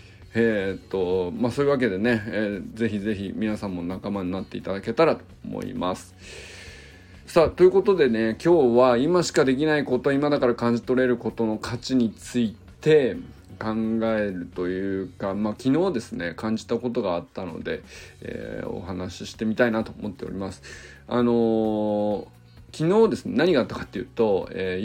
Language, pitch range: Japanese, 95-125 Hz